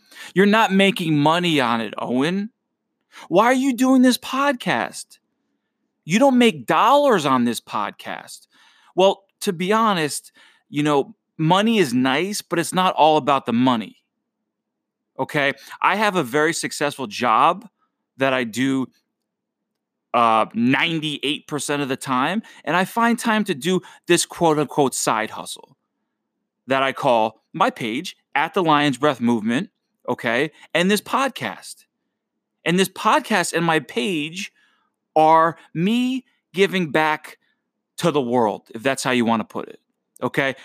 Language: English